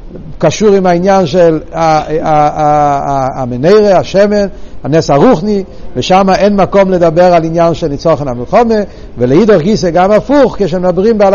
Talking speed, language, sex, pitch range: 125 wpm, Hebrew, male, 160-215 Hz